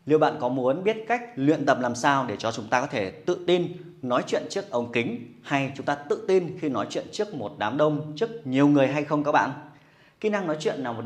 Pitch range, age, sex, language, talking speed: 130-175 Hz, 20-39, male, Vietnamese, 260 wpm